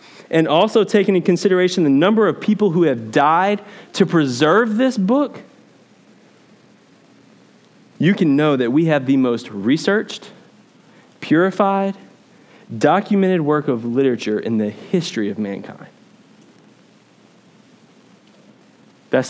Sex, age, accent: male, 20-39, American